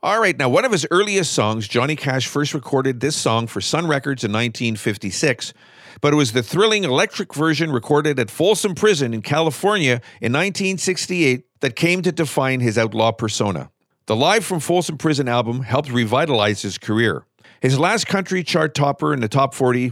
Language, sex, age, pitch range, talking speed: English, male, 50-69, 125-165 Hz, 180 wpm